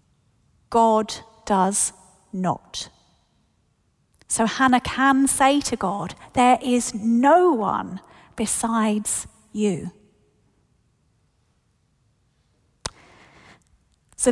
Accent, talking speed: British, 65 wpm